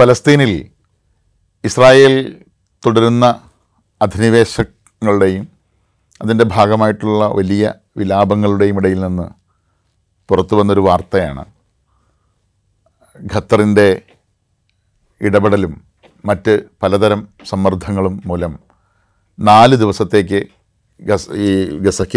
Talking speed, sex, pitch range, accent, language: 55 wpm, male, 95-120 Hz, native, Malayalam